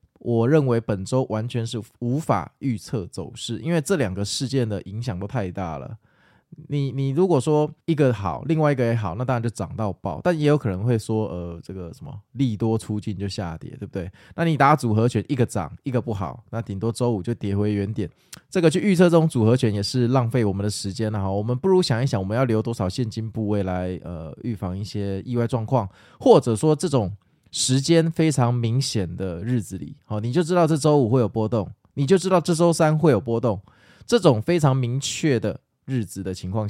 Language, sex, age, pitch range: Chinese, male, 20-39, 105-135 Hz